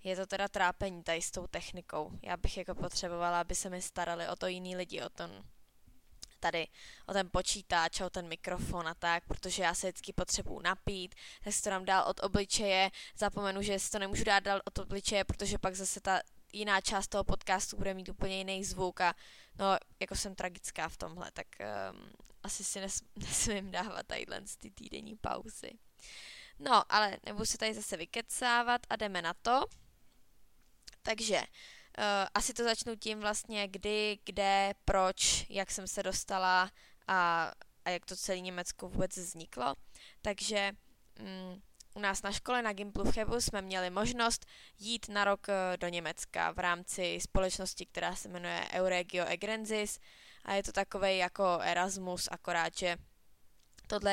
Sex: female